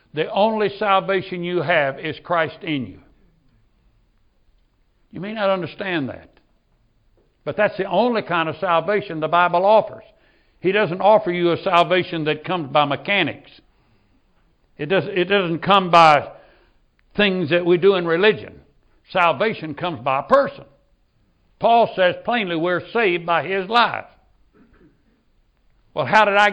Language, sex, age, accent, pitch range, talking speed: English, male, 60-79, American, 155-205 Hz, 140 wpm